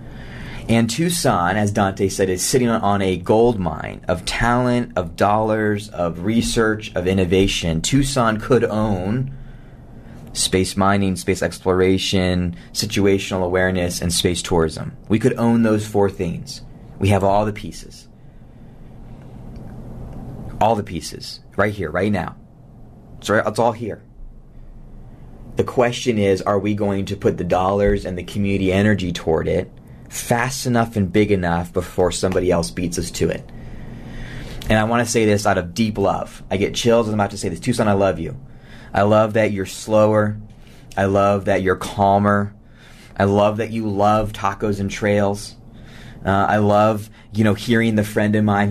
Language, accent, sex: English, American, male